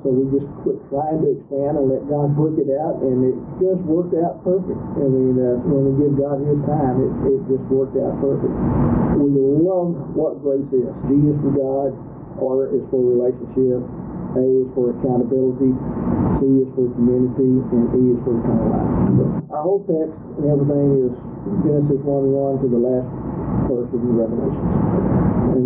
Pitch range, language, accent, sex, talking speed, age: 125-145 Hz, English, American, male, 185 wpm, 50-69